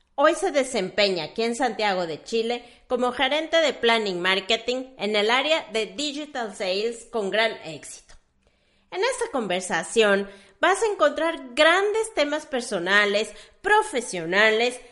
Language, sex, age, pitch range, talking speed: Spanish, female, 40-59, 220-330 Hz, 130 wpm